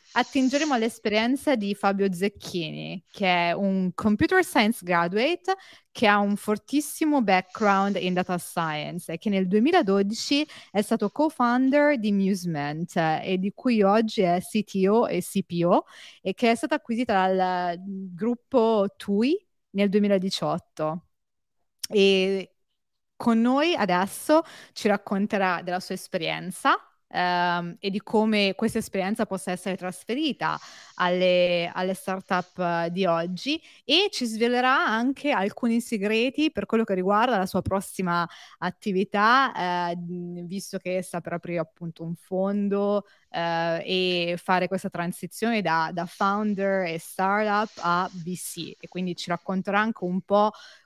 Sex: female